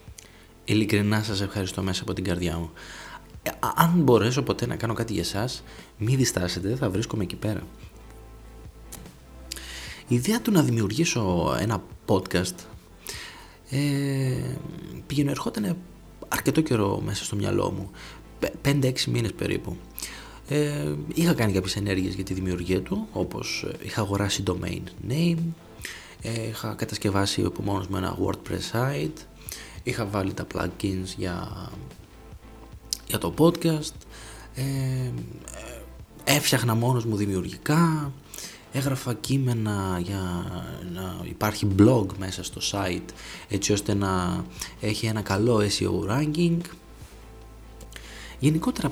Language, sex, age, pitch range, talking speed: Greek, male, 20-39, 95-135 Hz, 120 wpm